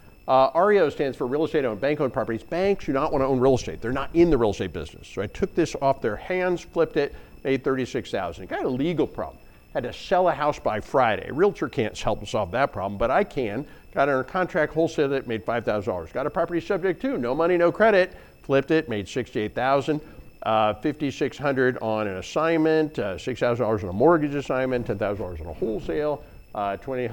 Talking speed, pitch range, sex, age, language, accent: 205 wpm, 115-155 Hz, male, 50-69, English, American